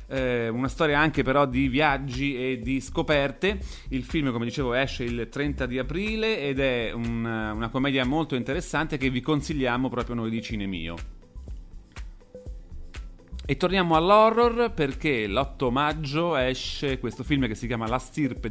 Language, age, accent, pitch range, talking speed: Italian, 30-49, native, 115-150 Hz, 150 wpm